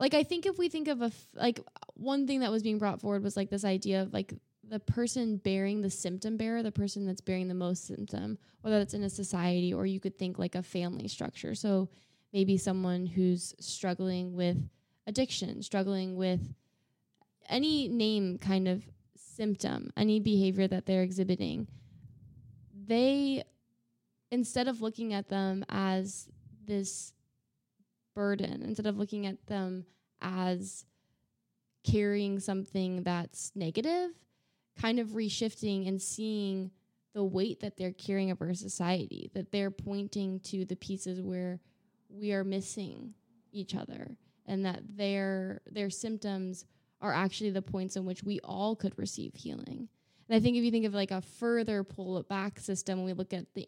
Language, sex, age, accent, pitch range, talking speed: English, female, 10-29, American, 185-210 Hz, 165 wpm